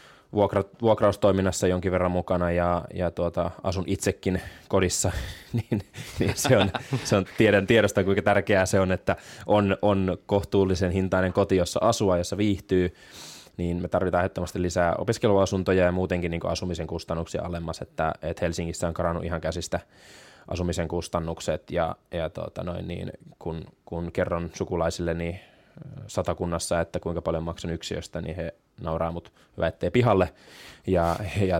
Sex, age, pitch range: male, 20-39, 85-95 Hz